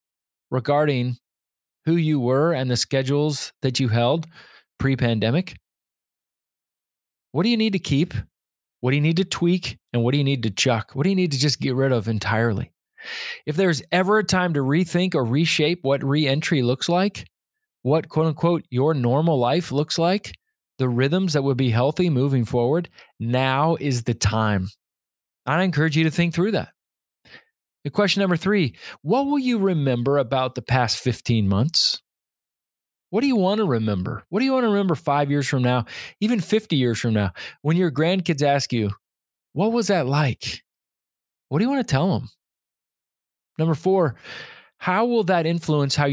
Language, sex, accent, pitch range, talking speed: English, male, American, 125-180 Hz, 175 wpm